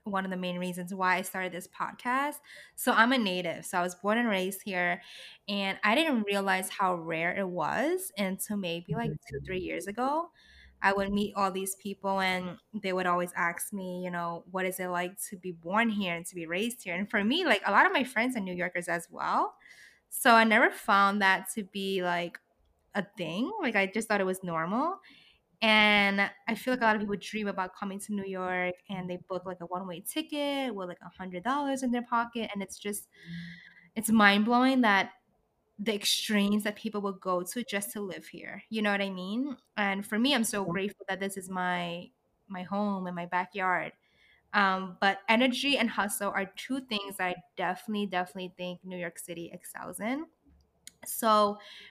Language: English